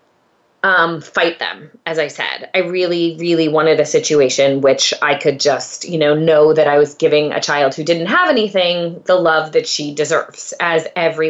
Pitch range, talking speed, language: 165-225 Hz, 190 wpm, English